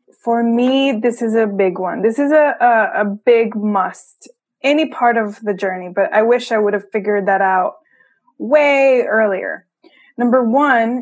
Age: 20-39